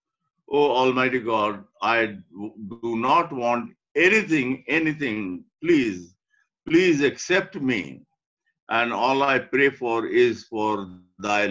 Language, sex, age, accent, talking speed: English, male, 50-69, Indian, 110 wpm